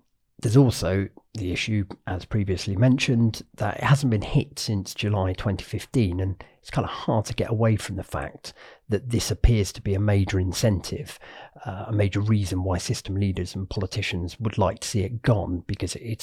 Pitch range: 95-115 Hz